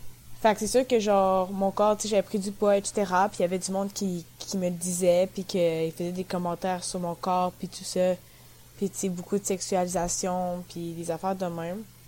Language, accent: French, Canadian